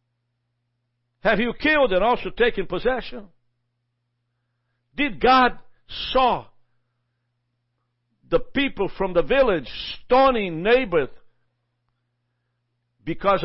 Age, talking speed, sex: 60-79, 80 wpm, male